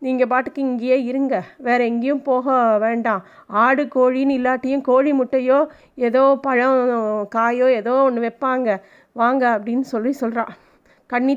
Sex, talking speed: female, 125 wpm